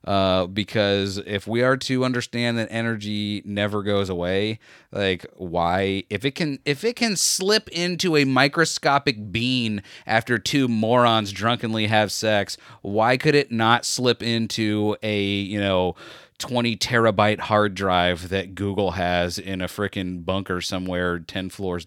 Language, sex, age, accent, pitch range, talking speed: English, male, 30-49, American, 100-125 Hz, 150 wpm